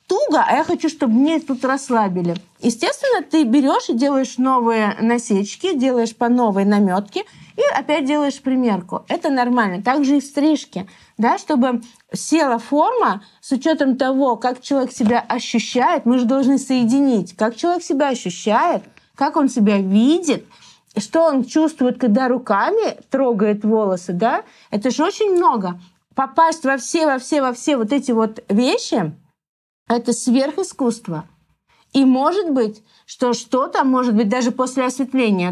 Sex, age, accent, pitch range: female, 20-39, native, 220-285 Hz